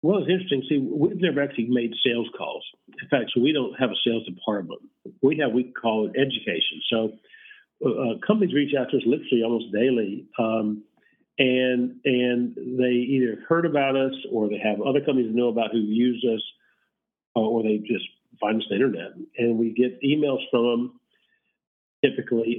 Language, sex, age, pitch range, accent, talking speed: English, male, 50-69, 115-135 Hz, American, 180 wpm